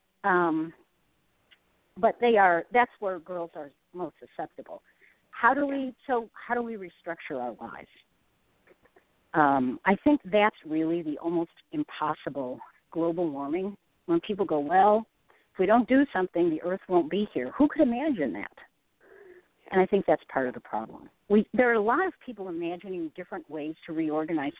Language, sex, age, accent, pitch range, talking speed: English, female, 50-69, American, 170-235 Hz, 165 wpm